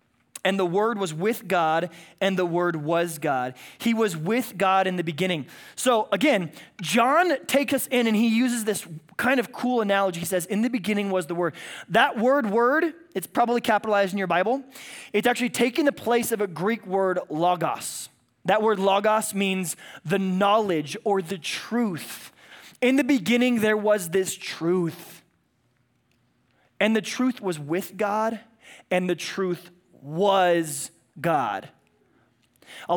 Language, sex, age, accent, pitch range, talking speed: English, male, 20-39, American, 185-235 Hz, 160 wpm